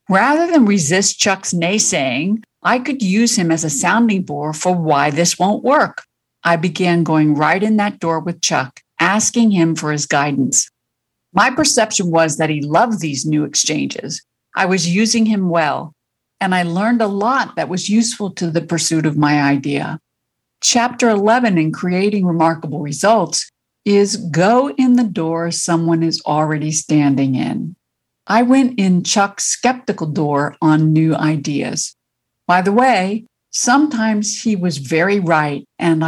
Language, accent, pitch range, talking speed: English, American, 160-220 Hz, 155 wpm